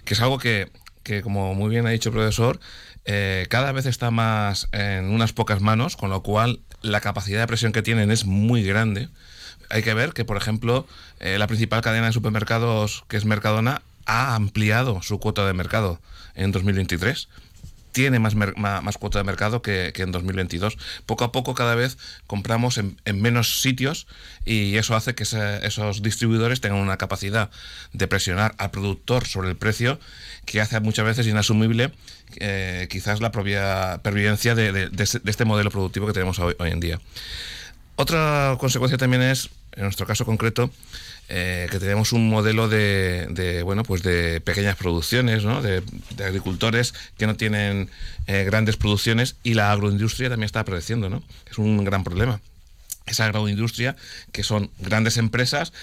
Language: Spanish